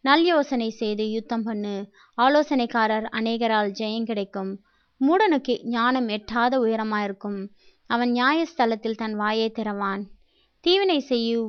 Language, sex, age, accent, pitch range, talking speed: Tamil, female, 20-39, native, 215-255 Hz, 105 wpm